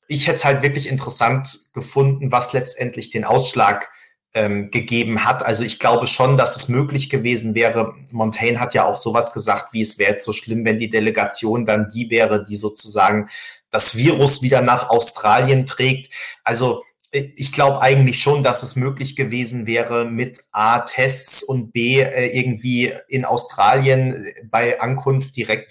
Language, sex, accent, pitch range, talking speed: German, male, German, 115-135 Hz, 165 wpm